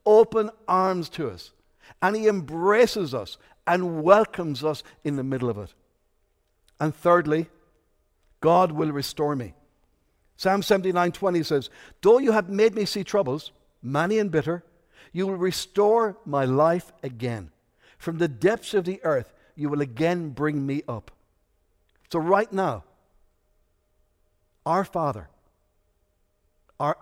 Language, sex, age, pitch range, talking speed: English, male, 60-79, 145-200 Hz, 135 wpm